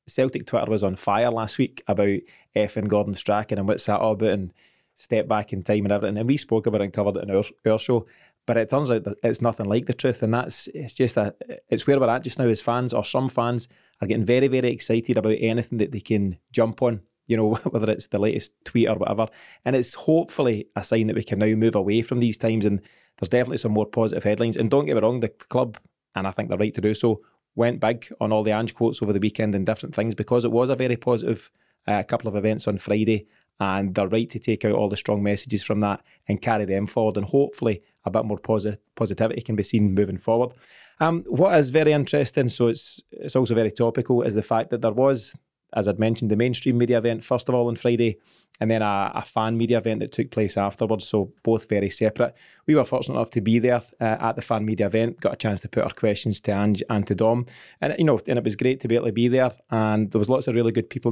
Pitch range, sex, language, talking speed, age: 105-120 Hz, male, English, 255 wpm, 20-39